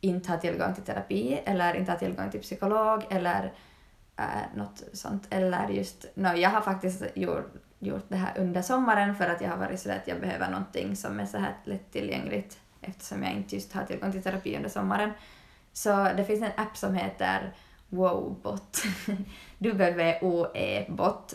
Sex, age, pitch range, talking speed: female, 20-39, 165-195 Hz, 170 wpm